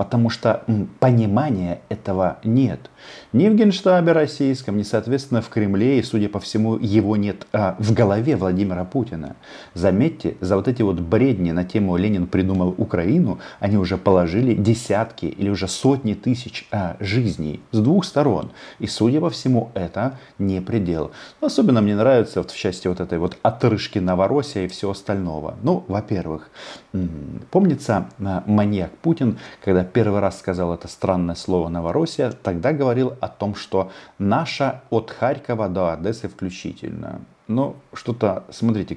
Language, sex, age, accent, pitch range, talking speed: Russian, male, 40-59, native, 90-115 Hz, 145 wpm